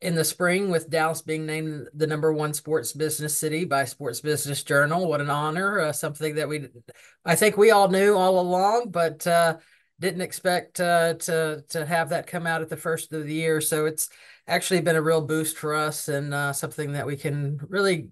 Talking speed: 210 wpm